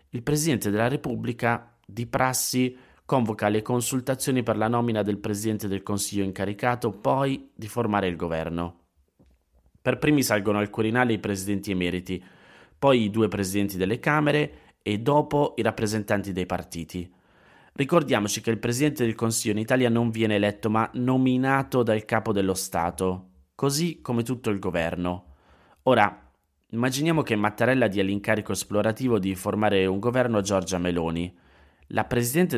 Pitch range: 95-120 Hz